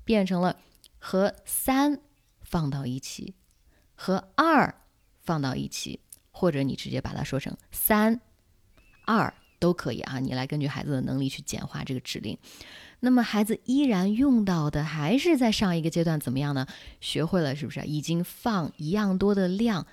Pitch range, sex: 140-200 Hz, female